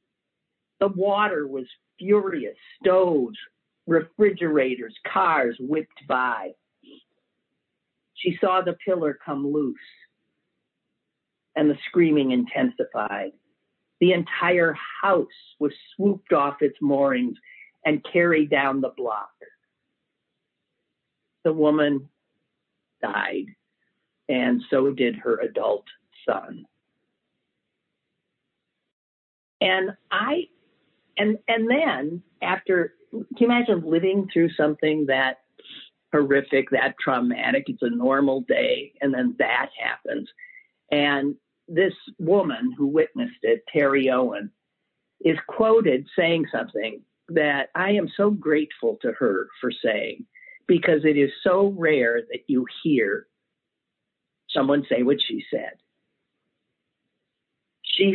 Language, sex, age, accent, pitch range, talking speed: English, male, 50-69, American, 140-205 Hz, 105 wpm